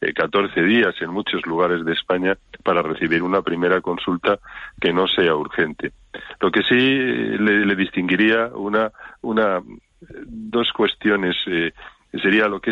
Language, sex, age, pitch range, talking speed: Spanish, male, 40-59, 90-115 Hz, 140 wpm